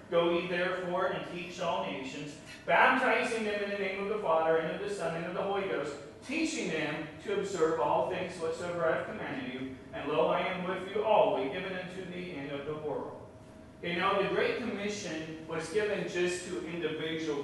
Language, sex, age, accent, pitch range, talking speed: English, male, 40-59, American, 145-180 Hz, 205 wpm